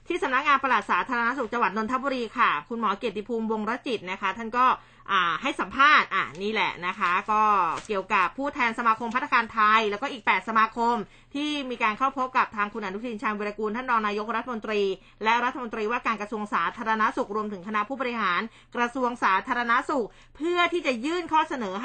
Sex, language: female, Thai